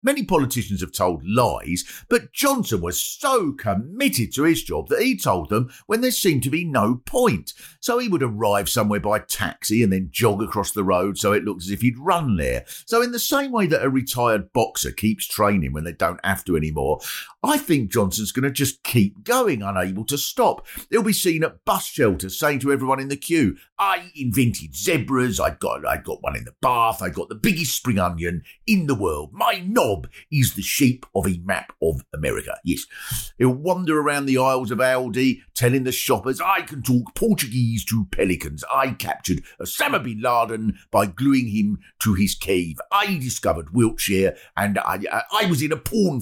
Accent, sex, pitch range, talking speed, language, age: British, male, 100-150 Hz, 200 wpm, English, 50-69